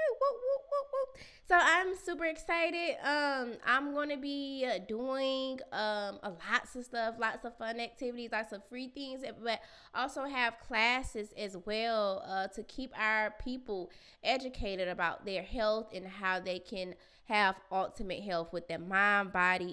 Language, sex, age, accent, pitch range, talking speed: English, female, 20-39, American, 185-240 Hz, 145 wpm